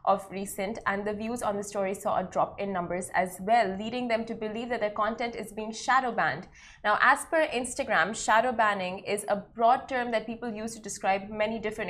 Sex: female